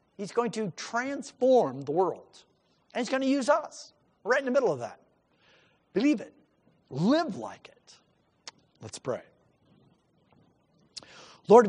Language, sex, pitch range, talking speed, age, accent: English, male, 140-205 Hz, 135 wpm, 50-69, American